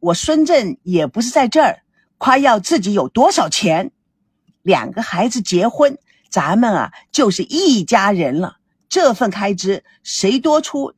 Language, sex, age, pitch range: Chinese, female, 50-69, 210-310 Hz